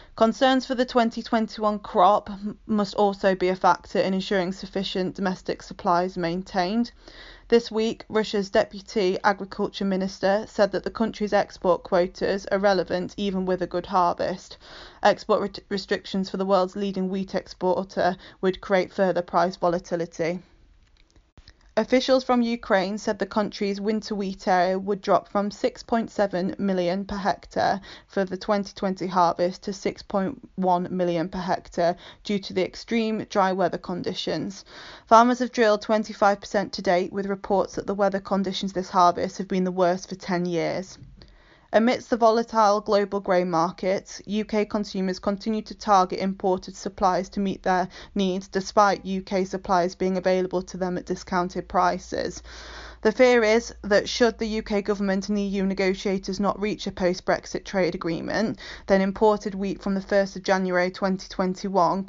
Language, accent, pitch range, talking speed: English, British, 185-210 Hz, 150 wpm